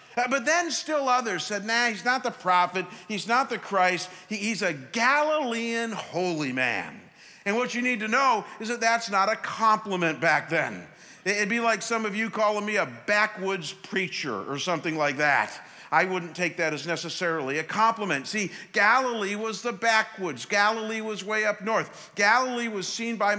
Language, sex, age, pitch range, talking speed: English, male, 50-69, 180-225 Hz, 180 wpm